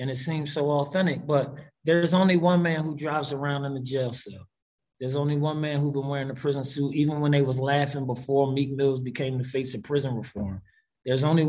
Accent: American